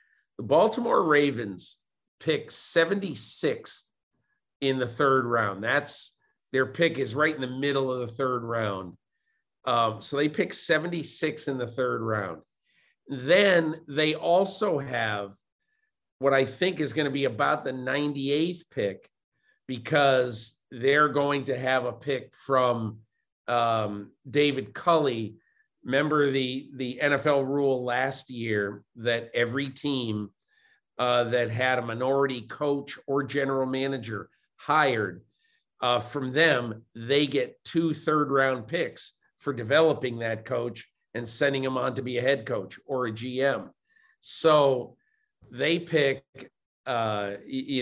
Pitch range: 120-145 Hz